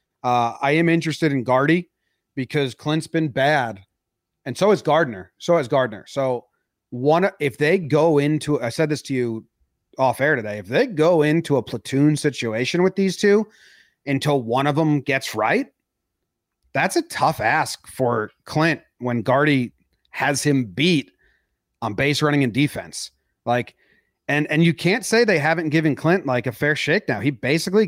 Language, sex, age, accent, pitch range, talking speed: English, male, 30-49, American, 130-170 Hz, 170 wpm